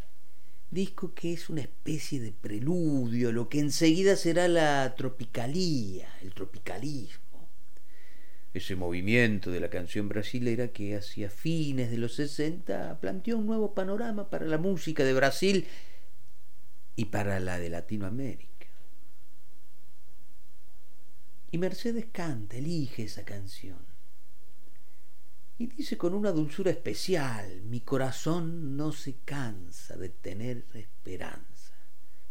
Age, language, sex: 50-69, Spanish, male